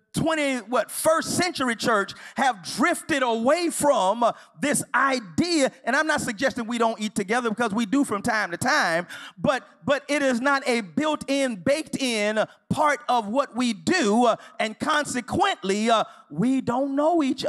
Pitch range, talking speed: 220-295 Hz, 165 wpm